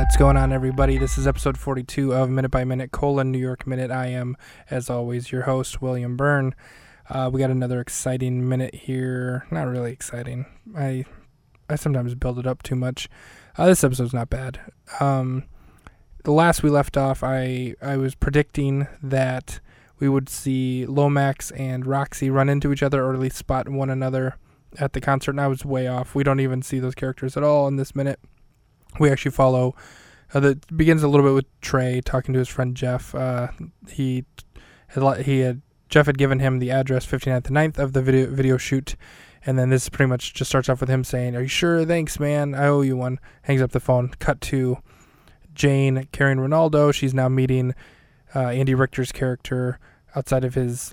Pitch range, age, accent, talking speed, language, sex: 125-140 Hz, 20-39, American, 195 wpm, English, male